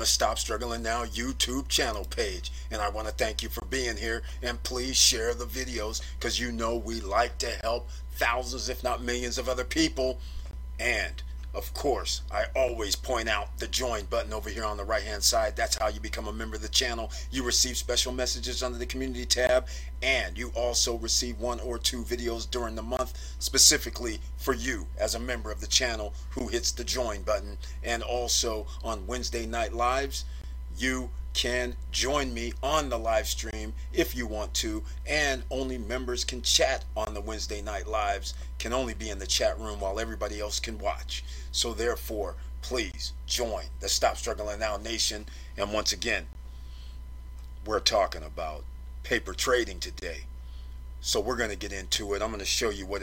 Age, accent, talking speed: 40-59, American, 185 wpm